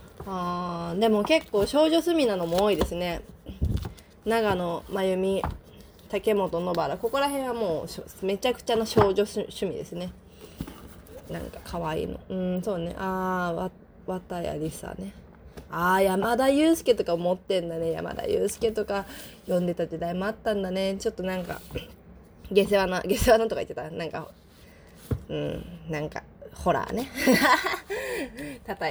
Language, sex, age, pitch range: Japanese, female, 20-39, 175-235 Hz